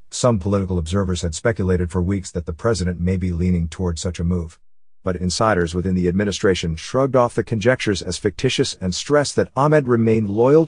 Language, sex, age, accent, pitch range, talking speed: English, male, 50-69, American, 90-115 Hz, 190 wpm